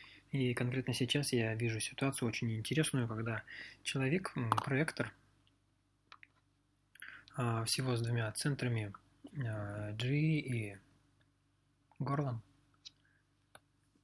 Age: 20-39